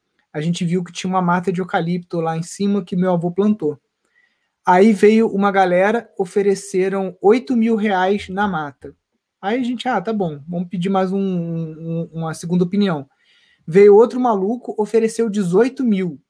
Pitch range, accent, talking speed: 175-215 Hz, Brazilian, 170 wpm